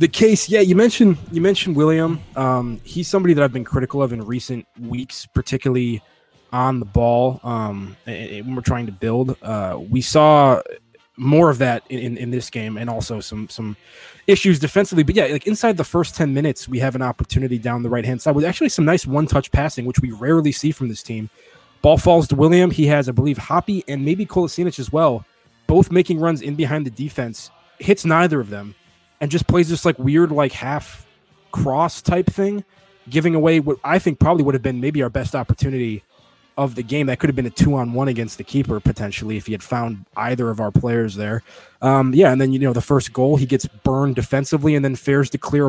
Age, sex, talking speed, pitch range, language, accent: 20-39, male, 215 wpm, 120-155 Hz, English, American